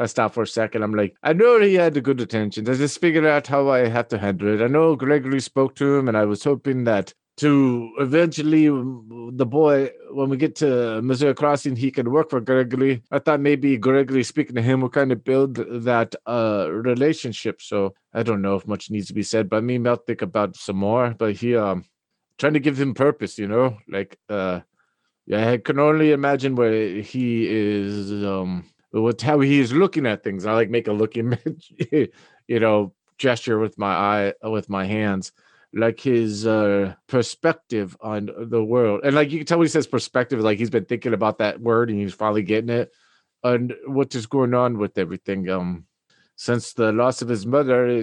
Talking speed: 210 wpm